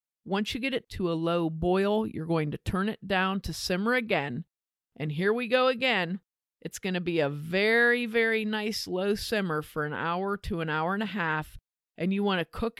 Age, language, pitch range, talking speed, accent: 50-69, English, 170-215 Hz, 215 wpm, American